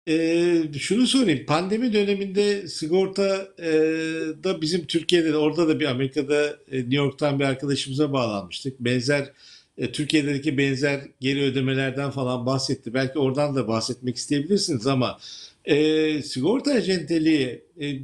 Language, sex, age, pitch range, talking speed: Turkish, male, 60-79, 140-195 Hz, 125 wpm